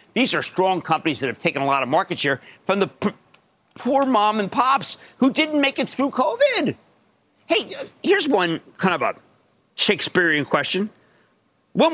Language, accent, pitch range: English, American, 160-255 Hz